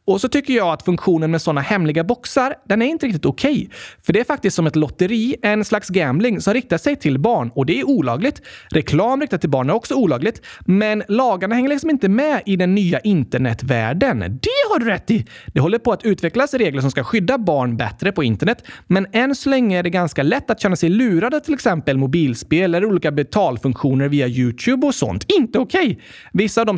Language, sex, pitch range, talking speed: Swedish, male, 150-235 Hz, 220 wpm